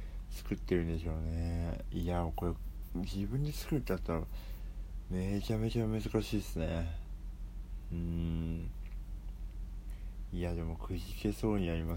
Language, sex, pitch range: Japanese, male, 85-95 Hz